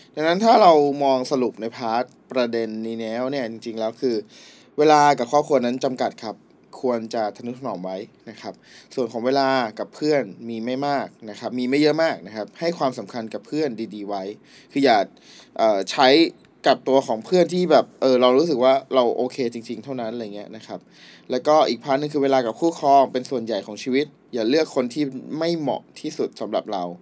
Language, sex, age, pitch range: Thai, male, 20-39, 115-145 Hz